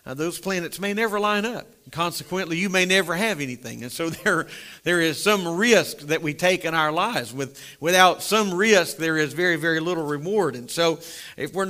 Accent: American